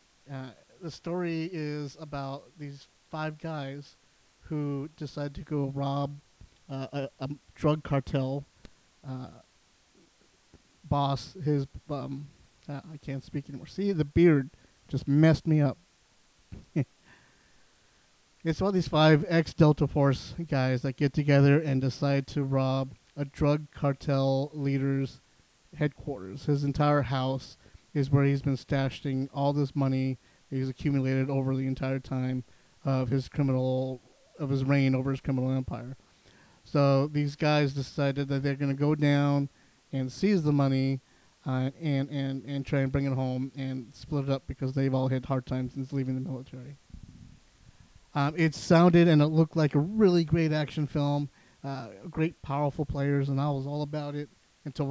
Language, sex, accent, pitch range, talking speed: English, male, American, 135-150 Hz, 155 wpm